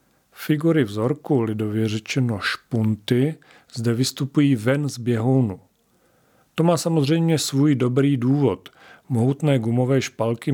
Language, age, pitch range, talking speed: Czech, 40-59, 110-130 Hz, 110 wpm